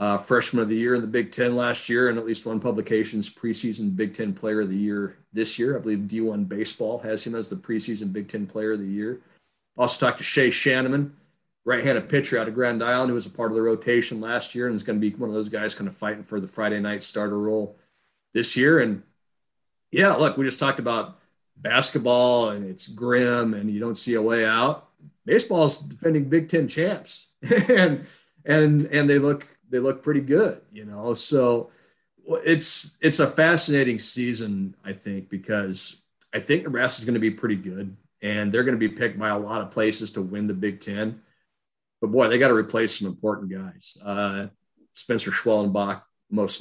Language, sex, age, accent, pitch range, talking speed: English, male, 40-59, American, 100-125 Hz, 210 wpm